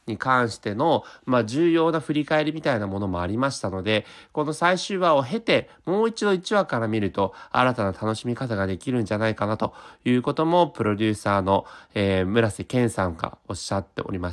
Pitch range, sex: 100-145 Hz, male